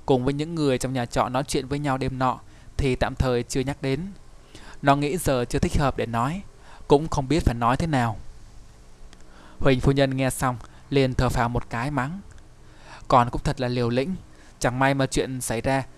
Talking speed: 215 wpm